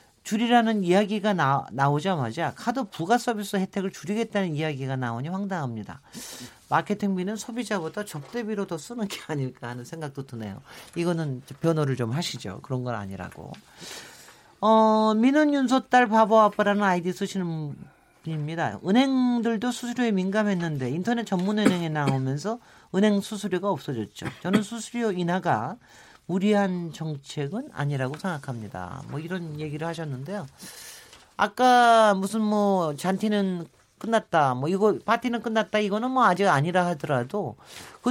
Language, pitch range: Korean, 155-230 Hz